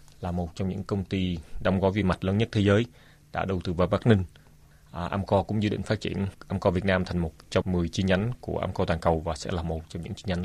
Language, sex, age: Vietnamese, male, 20-39